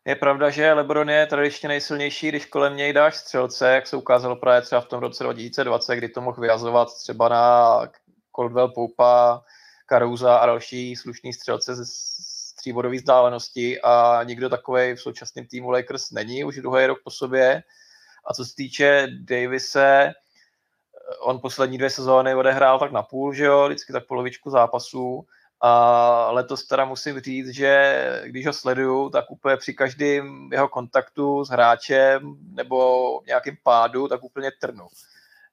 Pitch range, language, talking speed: 120-140 Hz, Czech, 155 wpm